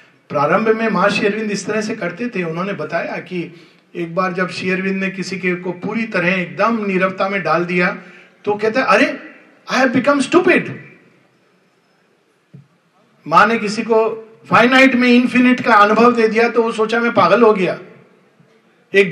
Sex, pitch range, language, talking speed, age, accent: male, 190-265 Hz, Hindi, 165 wpm, 50-69, native